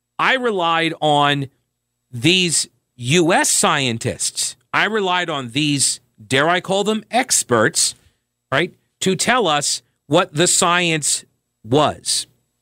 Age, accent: 40-59, American